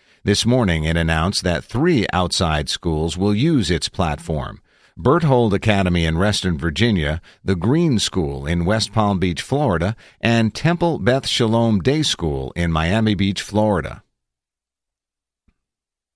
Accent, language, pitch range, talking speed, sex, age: American, English, 85-120 Hz, 130 wpm, male, 50-69